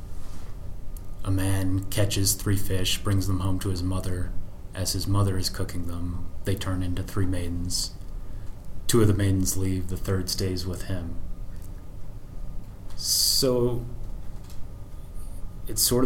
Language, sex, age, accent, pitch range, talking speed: English, male, 30-49, American, 90-100 Hz, 130 wpm